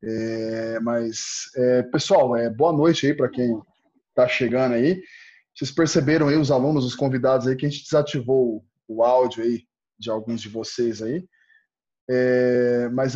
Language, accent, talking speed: Portuguese, Brazilian, 140 wpm